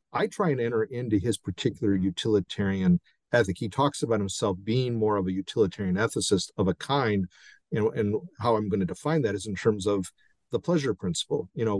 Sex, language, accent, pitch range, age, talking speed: male, English, American, 100-140 Hz, 50-69, 205 wpm